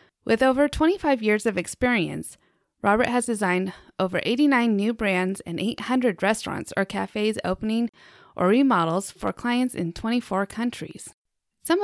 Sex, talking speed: female, 135 wpm